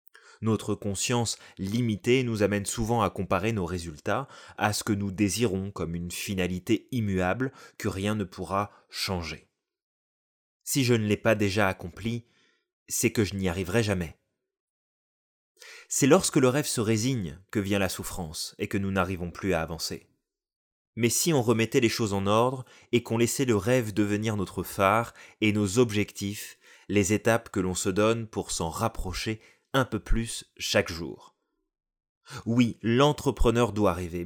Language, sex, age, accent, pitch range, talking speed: French, male, 20-39, French, 95-120 Hz, 160 wpm